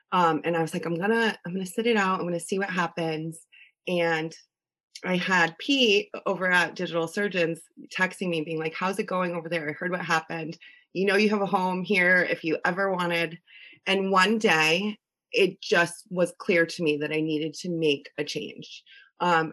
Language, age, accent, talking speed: English, 30-49, American, 210 wpm